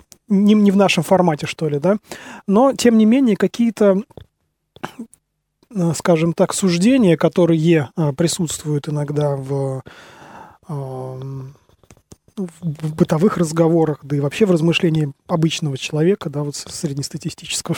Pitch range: 150-180 Hz